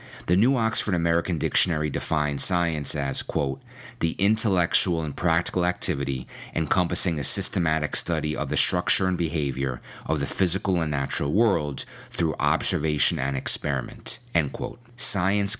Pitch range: 75-95 Hz